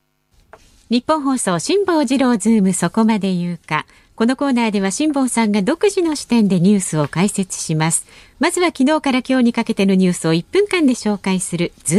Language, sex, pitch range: Japanese, female, 170-260 Hz